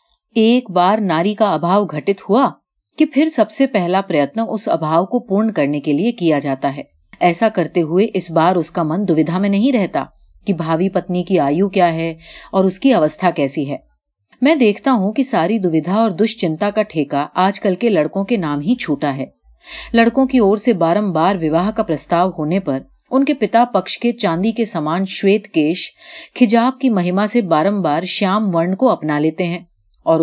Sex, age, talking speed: female, 40-59, 185 wpm